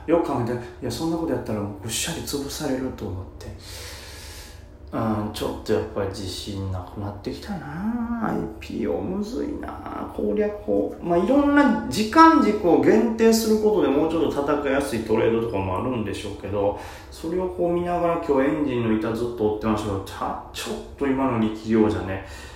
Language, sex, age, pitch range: Japanese, male, 30-49, 105-175 Hz